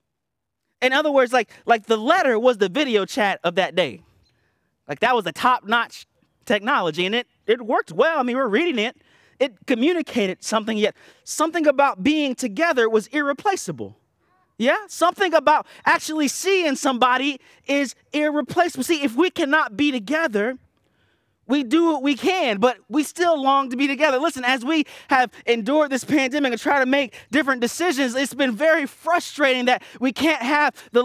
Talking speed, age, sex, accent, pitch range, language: 170 wpm, 30-49, male, American, 245-320 Hz, English